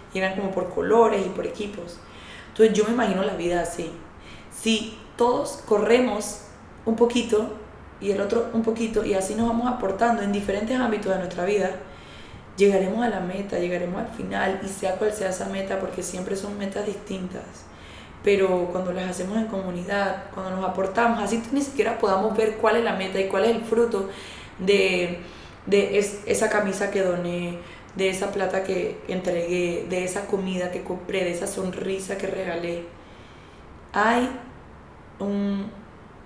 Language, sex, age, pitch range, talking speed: Spanish, female, 20-39, 180-210 Hz, 170 wpm